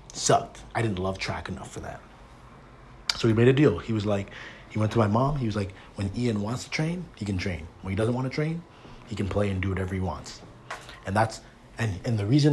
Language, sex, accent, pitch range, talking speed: English, male, American, 100-120 Hz, 250 wpm